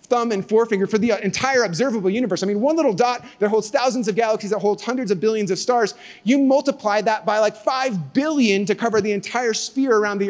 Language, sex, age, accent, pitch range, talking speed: English, male, 30-49, American, 165-225 Hz, 225 wpm